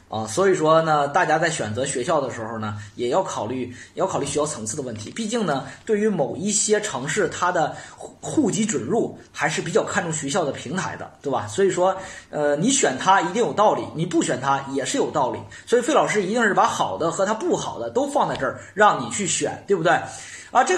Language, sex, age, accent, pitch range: Chinese, male, 20-39, native, 140-230 Hz